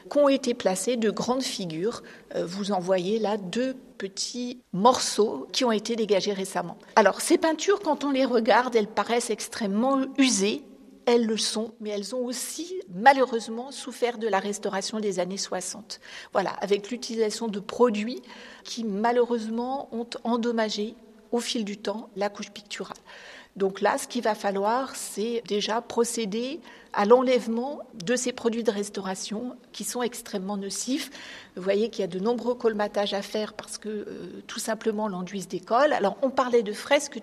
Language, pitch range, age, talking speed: French, 205-250 Hz, 50-69, 170 wpm